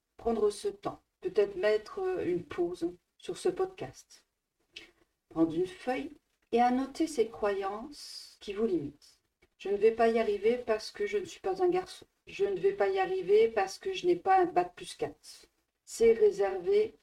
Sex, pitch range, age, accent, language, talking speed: female, 250-385 Hz, 50-69, French, French, 180 wpm